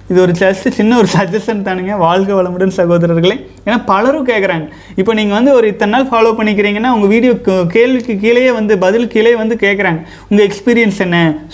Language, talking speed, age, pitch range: Tamil, 175 wpm, 30-49, 185-230 Hz